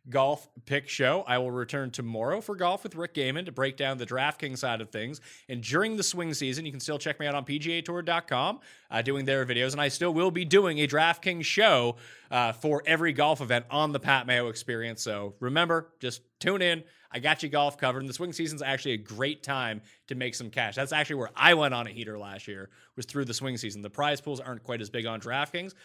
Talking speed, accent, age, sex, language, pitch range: 245 wpm, American, 30-49, male, English, 125-170 Hz